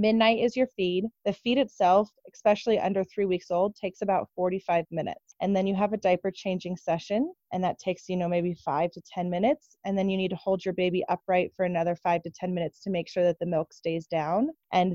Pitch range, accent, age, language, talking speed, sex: 175-215 Hz, American, 20-39, English, 235 wpm, female